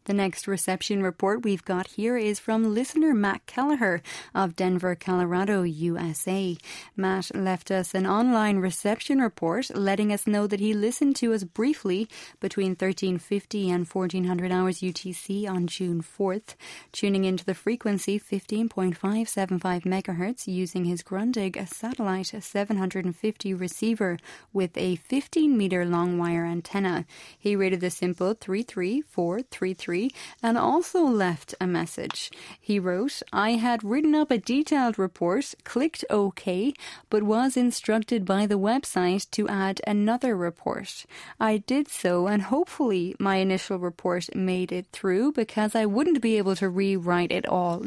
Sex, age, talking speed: female, 30-49, 140 wpm